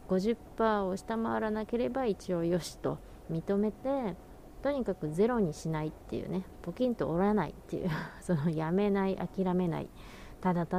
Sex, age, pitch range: female, 30-49, 160-205 Hz